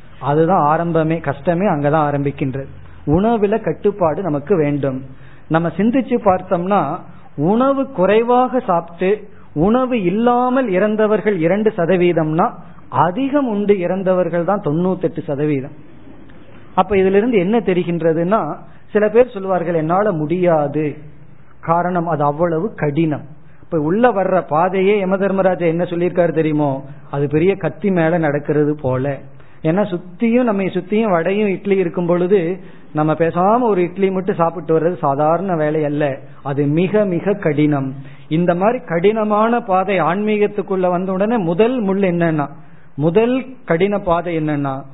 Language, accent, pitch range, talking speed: Tamil, native, 150-200 Hz, 105 wpm